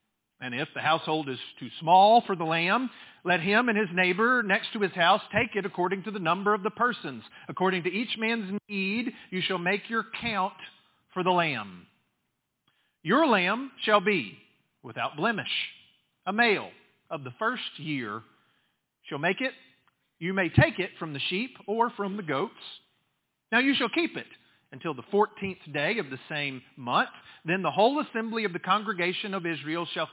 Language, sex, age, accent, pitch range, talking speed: English, male, 40-59, American, 165-220 Hz, 180 wpm